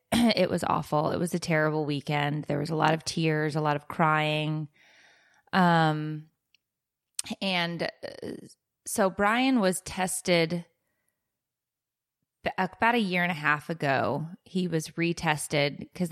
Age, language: 20-39, English